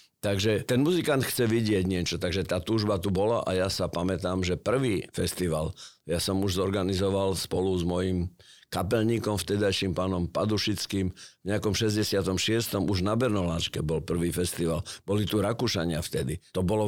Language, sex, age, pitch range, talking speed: Slovak, male, 50-69, 90-110 Hz, 155 wpm